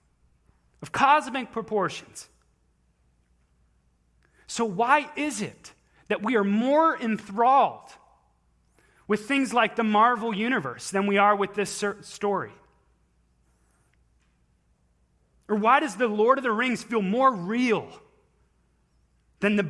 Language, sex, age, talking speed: English, male, 30-49, 110 wpm